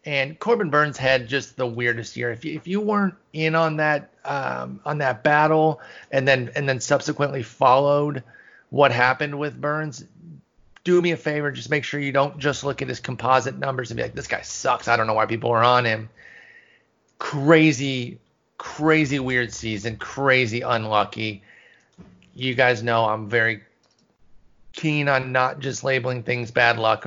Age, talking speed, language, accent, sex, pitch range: 30-49, 175 wpm, English, American, male, 115-140 Hz